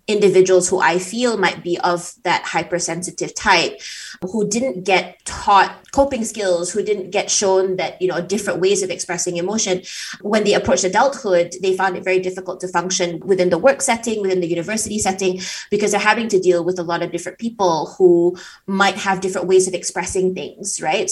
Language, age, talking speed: English, 20-39, 190 wpm